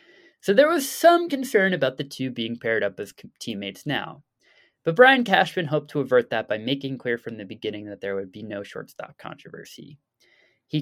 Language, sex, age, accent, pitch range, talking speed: English, male, 20-39, American, 115-175 Hz, 195 wpm